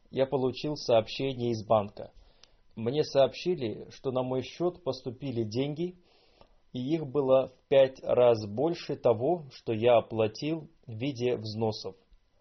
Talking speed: 130 wpm